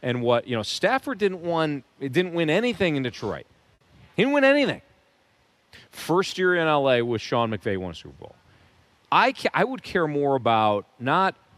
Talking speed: 185 wpm